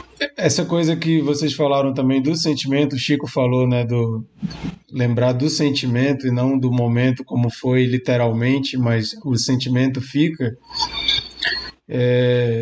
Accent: Brazilian